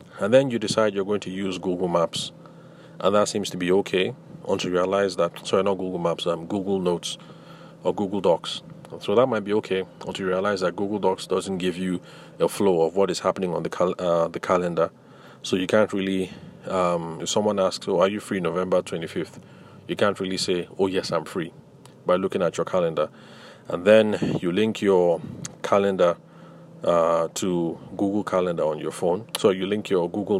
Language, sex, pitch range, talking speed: English, male, 90-105 Hz, 200 wpm